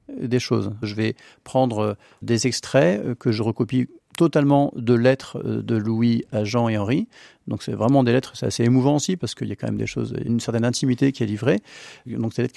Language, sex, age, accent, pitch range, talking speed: French, male, 40-59, French, 115-135 Hz, 220 wpm